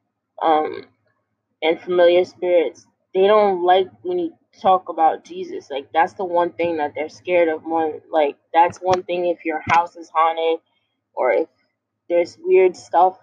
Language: English